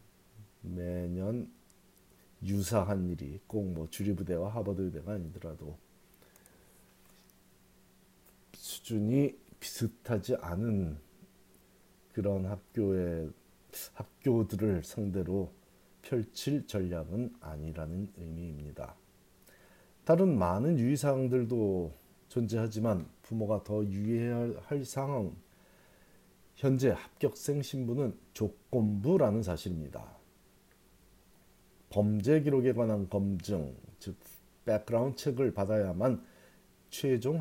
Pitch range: 95-130 Hz